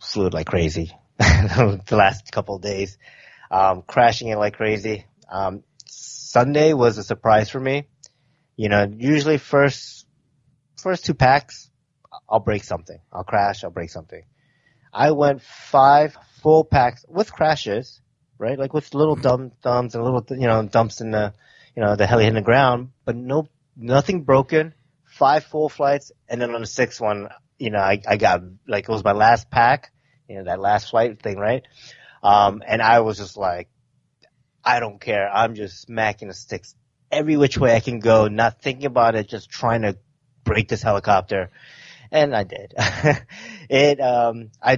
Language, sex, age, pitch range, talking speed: English, male, 30-49, 105-135 Hz, 175 wpm